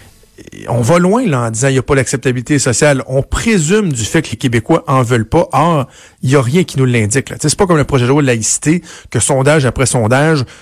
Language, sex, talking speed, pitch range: French, male, 255 wpm, 115-150 Hz